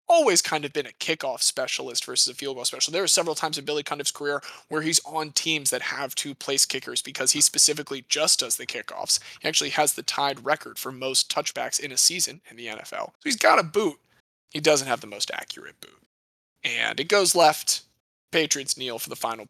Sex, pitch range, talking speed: male, 125-160 Hz, 220 wpm